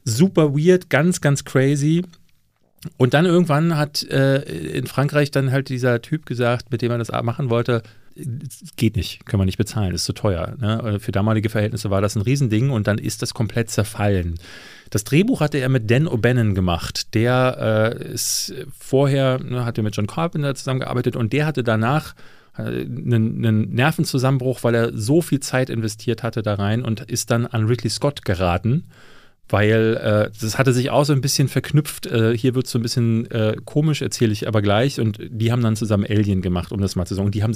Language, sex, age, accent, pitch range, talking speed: German, male, 40-59, German, 110-140 Hz, 200 wpm